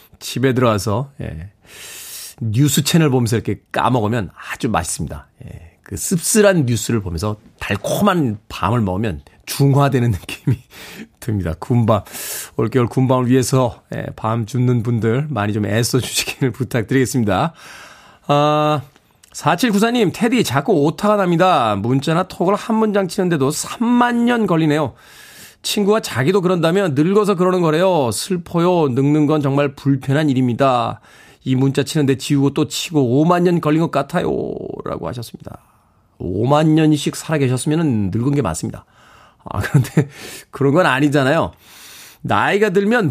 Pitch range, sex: 125-185 Hz, male